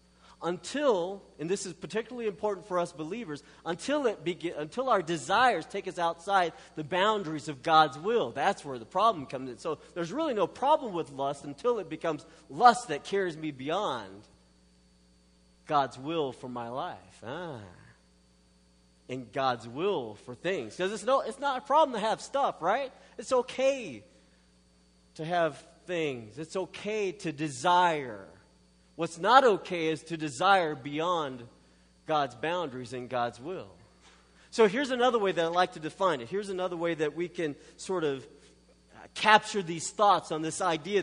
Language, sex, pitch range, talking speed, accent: English, male, 135-195 Hz, 160 wpm, American